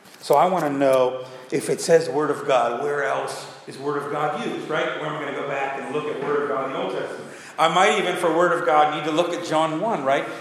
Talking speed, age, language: 290 wpm, 40-59, English